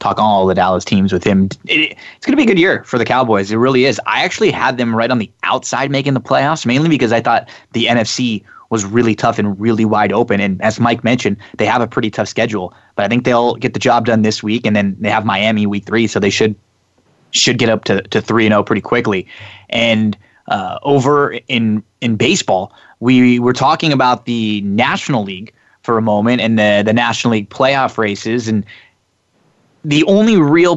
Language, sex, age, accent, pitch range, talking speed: English, male, 20-39, American, 110-130 Hz, 215 wpm